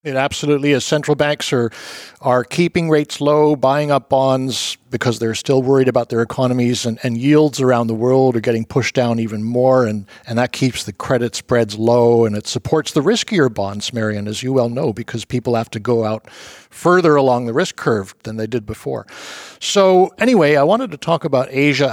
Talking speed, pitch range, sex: 205 wpm, 115-145 Hz, male